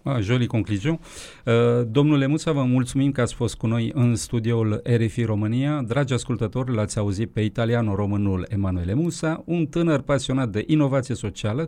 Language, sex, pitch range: Romanian, male, 105-135 Hz